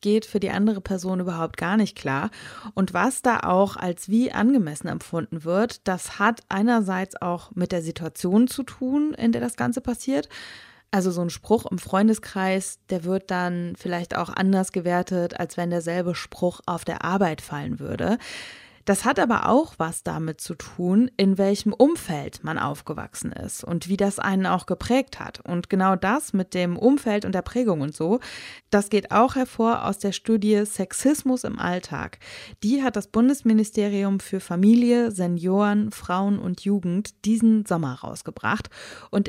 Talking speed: 170 wpm